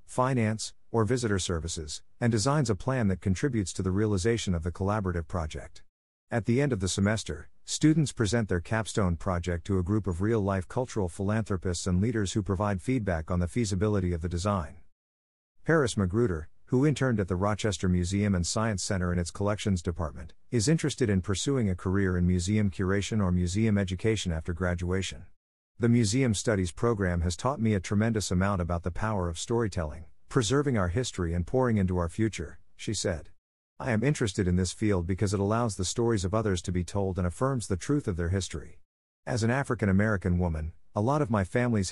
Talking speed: 190 wpm